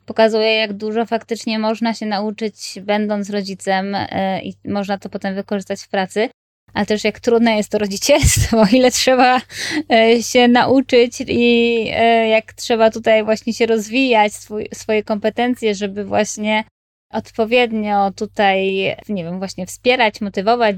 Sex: female